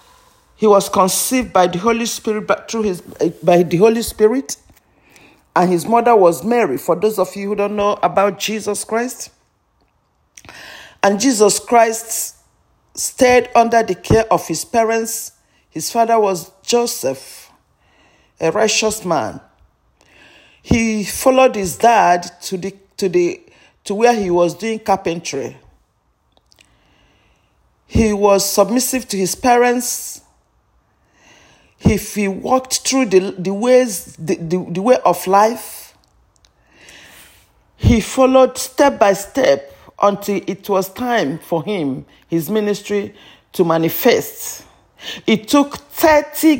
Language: English